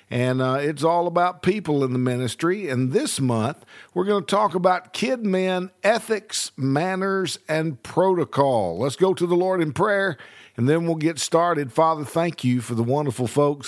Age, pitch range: 50-69, 125-175 Hz